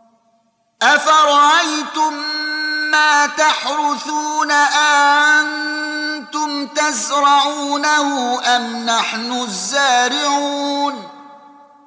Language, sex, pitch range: Arabic, male, 230-290 Hz